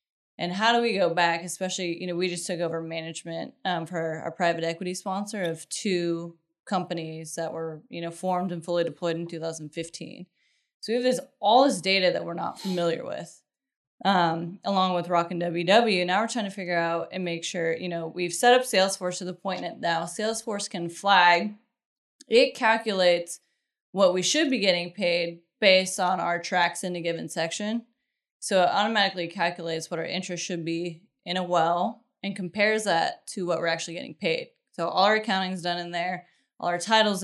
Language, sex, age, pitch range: English, female, 20-39, 170-200 Hz